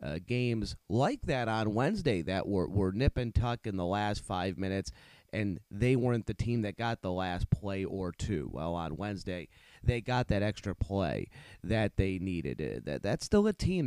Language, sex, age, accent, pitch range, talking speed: English, male, 30-49, American, 90-115 Hz, 200 wpm